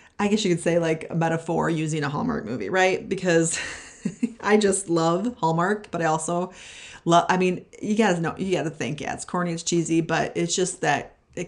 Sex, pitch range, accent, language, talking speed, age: female, 155-205 Hz, American, English, 215 wpm, 30-49